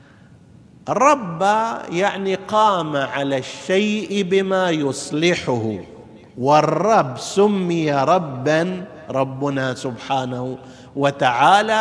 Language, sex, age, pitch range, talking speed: Arabic, male, 50-69, 145-200 Hz, 65 wpm